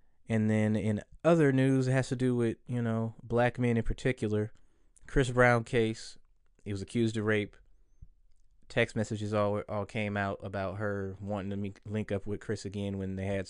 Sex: male